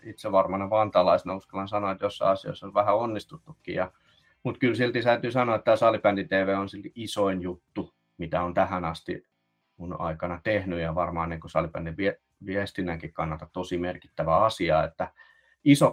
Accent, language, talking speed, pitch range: native, Finnish, 160 wpm, 95-115 Hz